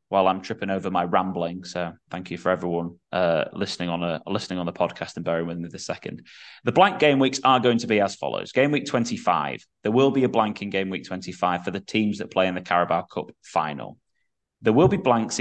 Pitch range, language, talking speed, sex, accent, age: 90-120 Hz, English, 240 wpm, male, British, 10-29